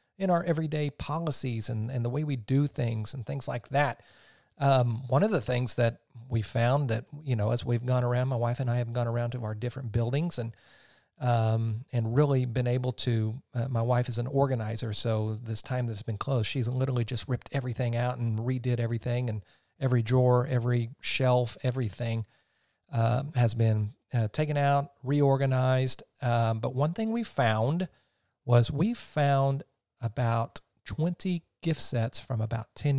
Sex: male